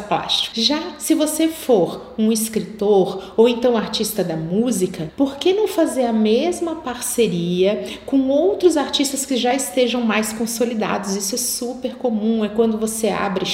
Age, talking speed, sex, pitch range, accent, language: 40-59, 150 wpm, female, 205-260 Hz, Brazilian, Portuguese